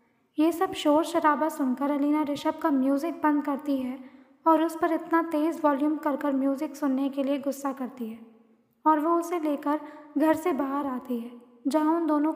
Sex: female